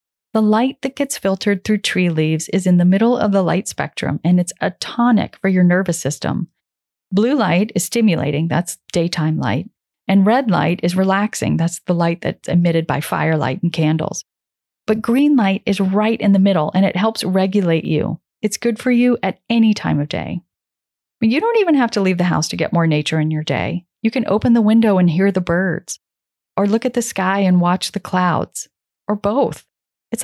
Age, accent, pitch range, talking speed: 40-59, American, 175-215 Hz, 205 wpm